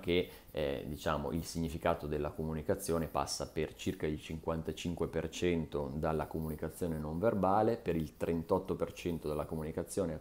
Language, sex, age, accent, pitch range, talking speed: Italian, male, 30-49, native, 75-90 Hz, 125 wpm